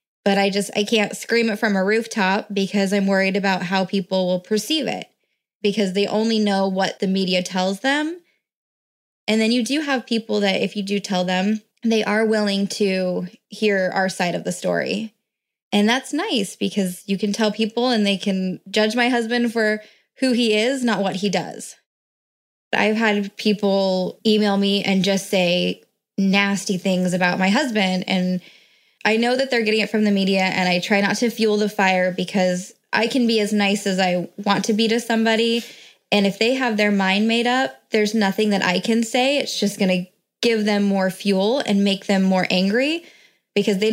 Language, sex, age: English, female, 10-29